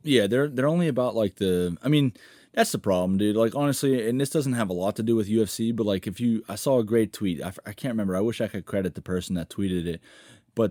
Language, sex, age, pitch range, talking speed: English, male, 20-39, 95-115 Hz, 275 wpm